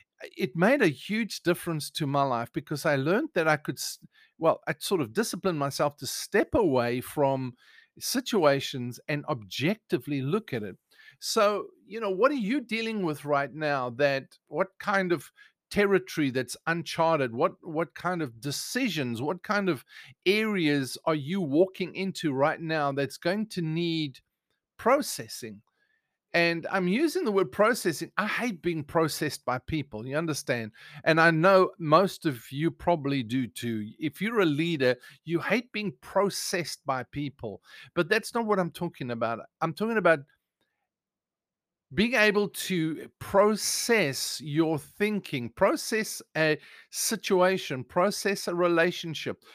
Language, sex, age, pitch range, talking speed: English, male, 50-69, 145-200 Hz, 150 wpm